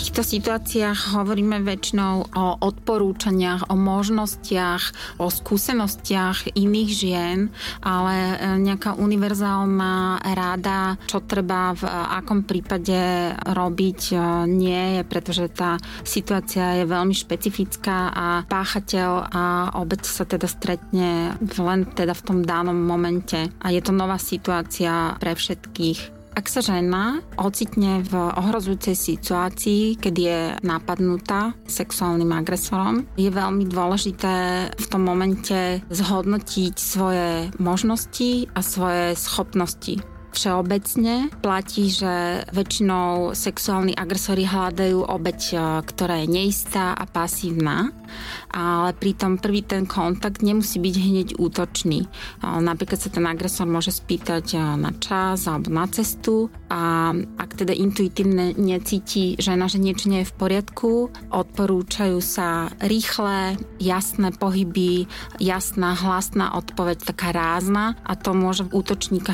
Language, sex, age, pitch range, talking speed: Slovak, female, 30-49, 180-200 Hz, 115 wpm